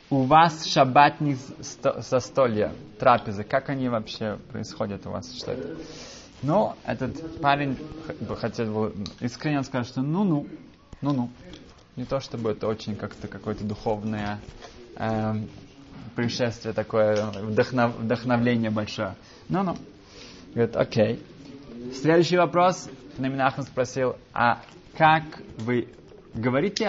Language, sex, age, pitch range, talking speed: Russian, male, 20-39, 110-140 Hz, 105 wpm